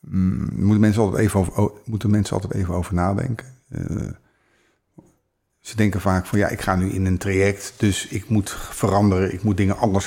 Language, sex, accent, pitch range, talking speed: Dutch, male, Dutch, 90-105 Hz, 190 wpm